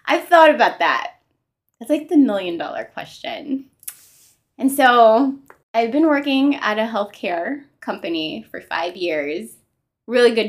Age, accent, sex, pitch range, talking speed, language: 20-39, American, female, 175-255 Hz, 130 wpm, English